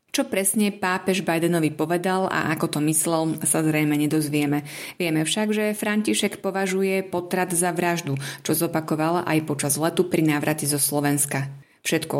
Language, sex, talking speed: Slovak, female, 150 wpm